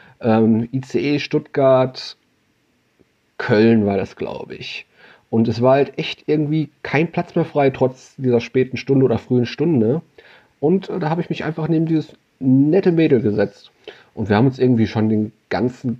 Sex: male